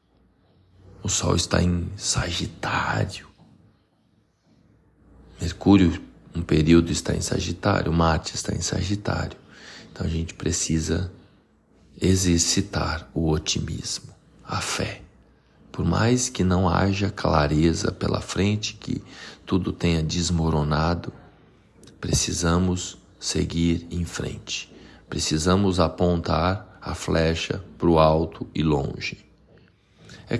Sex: male